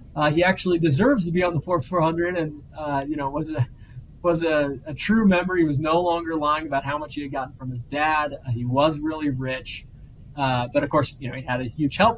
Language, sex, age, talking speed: English, male, 20-39, 245 wpm